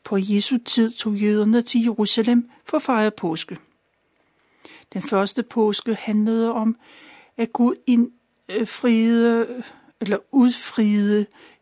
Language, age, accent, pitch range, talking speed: Danish, 60-79, native, 205-245 Hz, 110 wpm